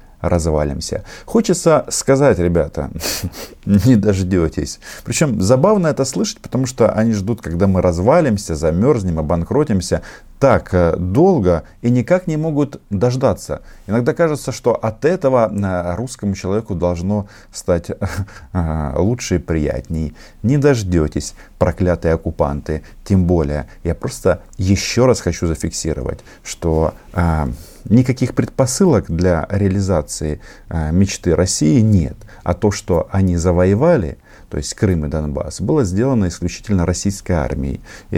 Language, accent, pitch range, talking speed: Russian, native, 85-115 Hz, 120 wpm